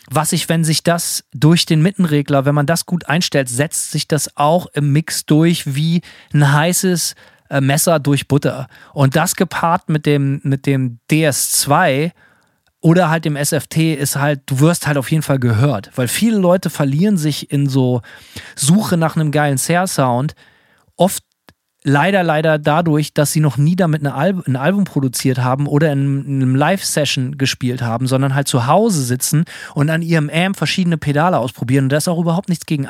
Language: German